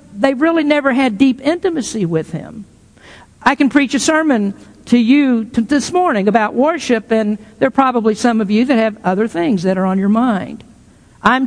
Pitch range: 205-265 Hz